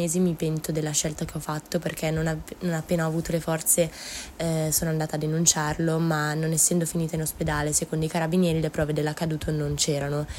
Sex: female